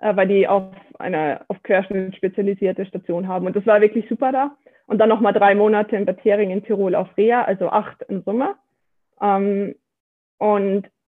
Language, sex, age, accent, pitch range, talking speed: German, female, 20-39, German, 190-220 Hz, 165 wpm